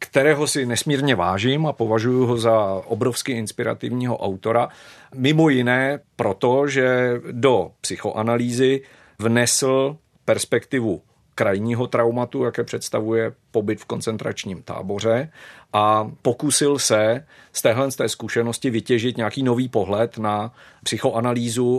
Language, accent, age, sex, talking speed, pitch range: Czech, native, 40-59, male, 105 wpm, 110-130 Hz